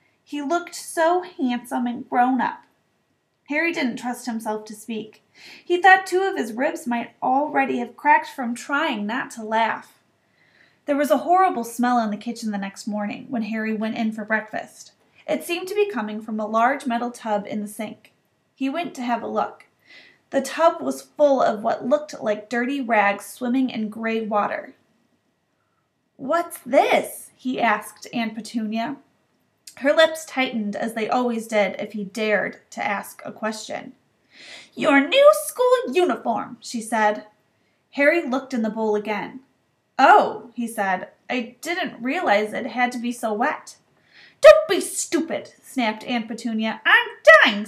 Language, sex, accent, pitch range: English, female, American, 220-310 Hz